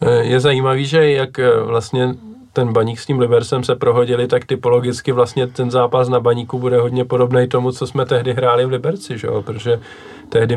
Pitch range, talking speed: 110-130 Hz, 180 wpm